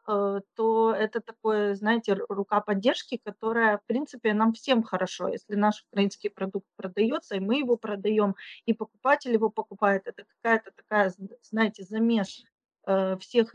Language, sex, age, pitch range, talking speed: Ukrainian, female, 30-49, 195-230 Hz, 135 wpm